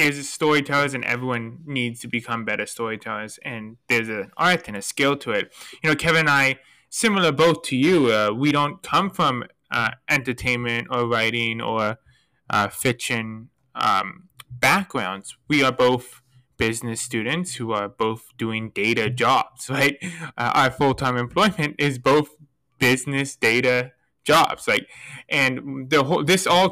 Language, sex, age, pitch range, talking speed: English, male, 20-39, 120-150 Hz, 155 wpm